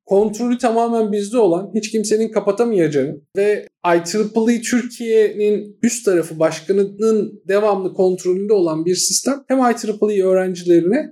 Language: Turkish